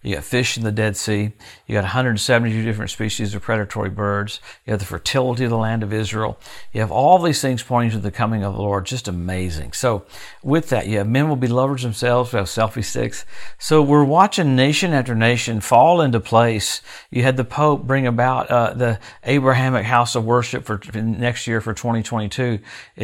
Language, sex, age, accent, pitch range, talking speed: English, male, 50-69, American, 105-130 Hz, 205 wpm